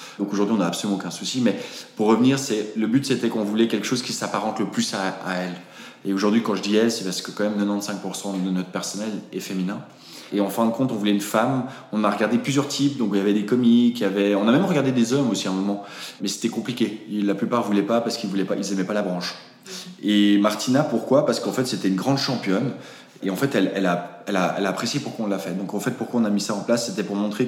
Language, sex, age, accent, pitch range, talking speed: French, male, 20-39, French, 95-115 Hz, 275 wpm